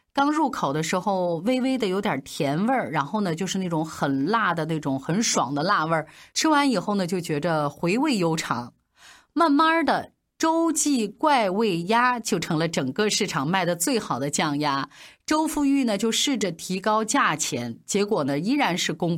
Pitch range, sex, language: 165-250 Hz, female, Chinese